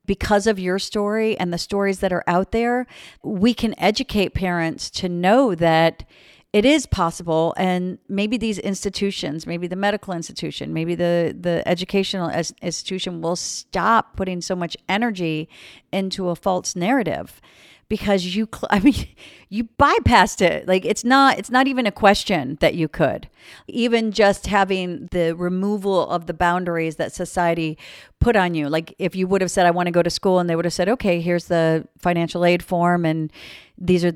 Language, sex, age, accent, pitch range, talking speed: English, female, 50-69, American, 160-195 Hz, 175 wpm